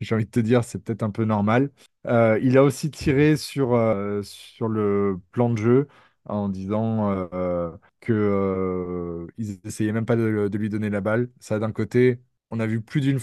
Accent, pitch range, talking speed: French, 100-120 Hz, 200 wpm